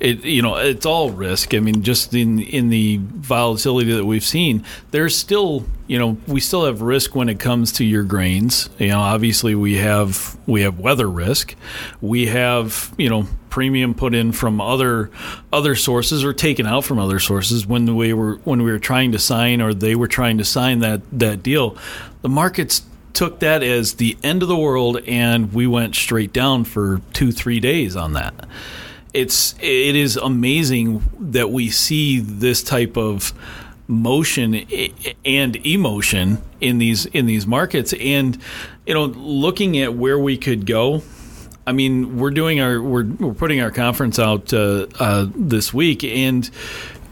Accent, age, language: American, 40-59, English